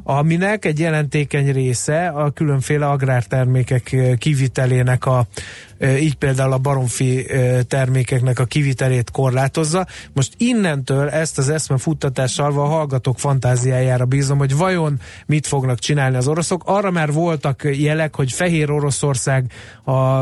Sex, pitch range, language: male, 130-150 Hz, Hungarian